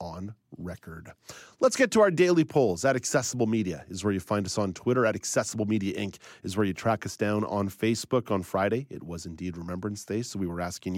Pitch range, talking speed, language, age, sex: 95-125 Hz, 225 wpm, English, 30-49, male